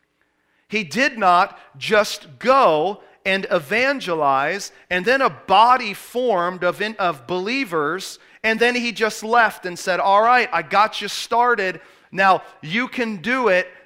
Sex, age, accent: male, 40-59, American